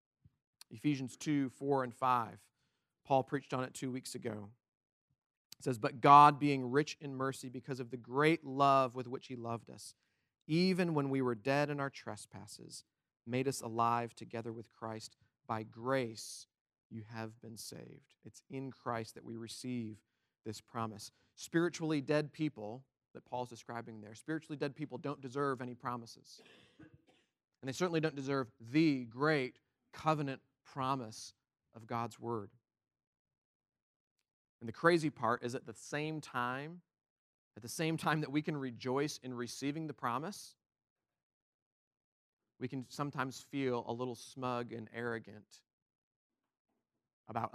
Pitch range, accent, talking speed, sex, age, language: 115-140 Hz, American, 145 wpm, male, 40-59, English